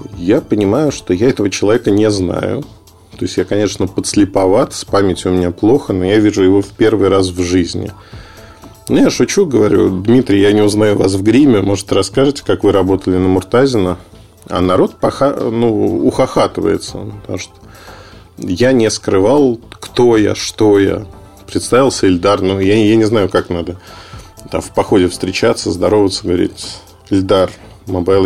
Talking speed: 160 wpm